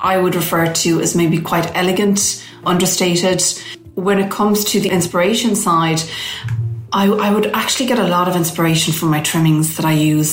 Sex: female